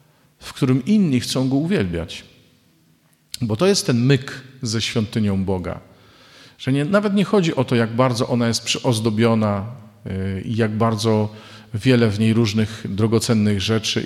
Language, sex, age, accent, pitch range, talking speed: Polish, male, 50-69, native, 110-140 Hz, 155 wpm